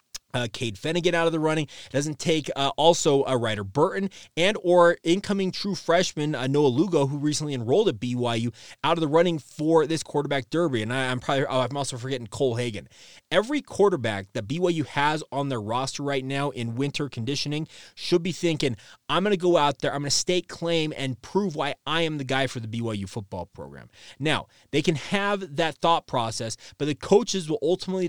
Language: English